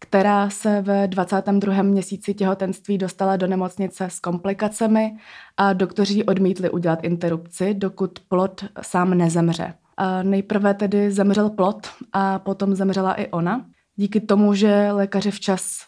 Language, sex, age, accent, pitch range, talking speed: Czech, female, 20-39, native, 185-210 Hz, 130 wpm